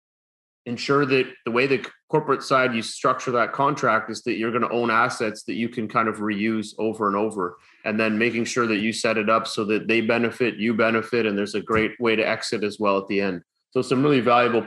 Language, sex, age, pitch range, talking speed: English, male, 30-49, 110-125 Hz, 235 wpm